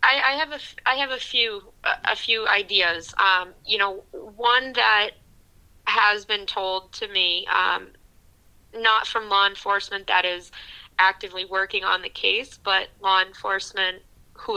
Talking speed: 150 wpm